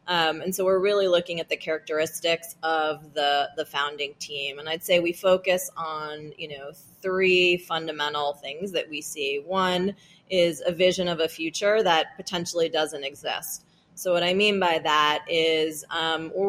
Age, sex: 30-49, female